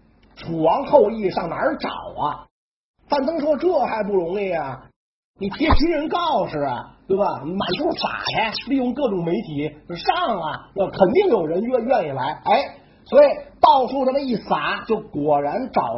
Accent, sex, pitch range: native, male, 185-275 Hz